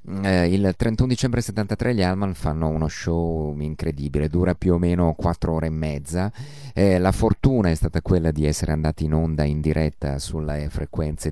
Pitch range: 75-90 Hz